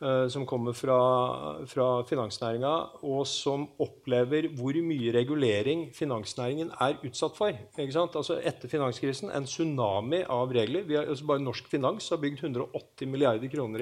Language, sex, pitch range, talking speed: English, male, 130-165 Hz, 150 wpm